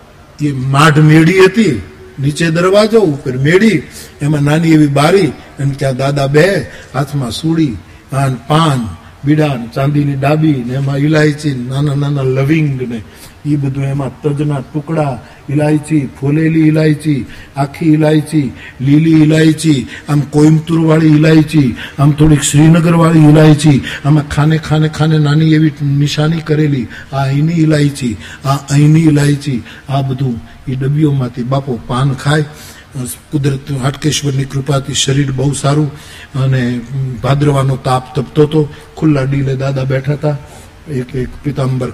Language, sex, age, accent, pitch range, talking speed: Gujarati, male, 60-79, native, 125-155 Hz, 125 wpm